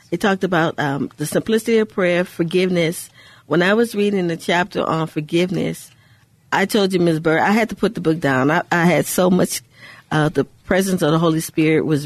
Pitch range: 140-175 Hz